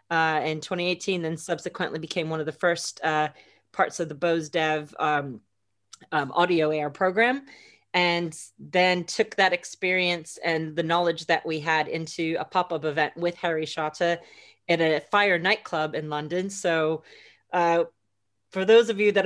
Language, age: English, 30-49